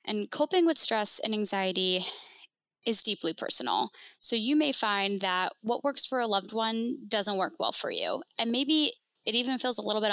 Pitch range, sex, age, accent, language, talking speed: 190-255 Hz, female, 10-29, American, English, 195 wpm